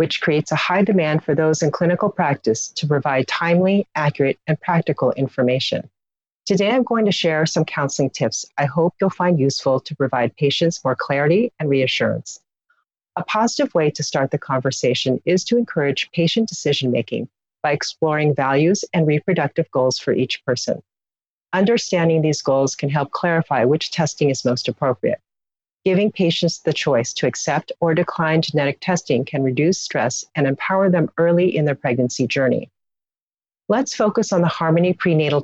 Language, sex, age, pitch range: English, female, 40-59, 140-180 Hz